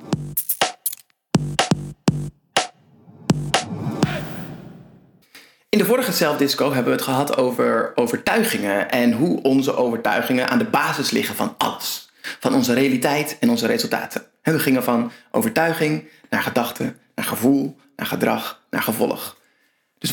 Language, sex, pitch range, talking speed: Dutch, male, 150-220 Hz, 115 wpm